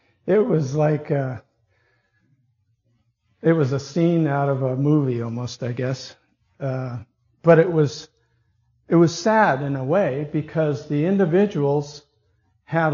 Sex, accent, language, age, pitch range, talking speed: male, American, English, 50-69, 120-165 Hz, 130 wpm